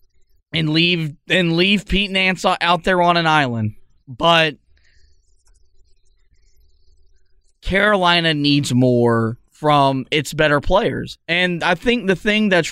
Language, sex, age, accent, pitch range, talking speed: English, male, 20-39, American, 140-185 Hz, 120 wpm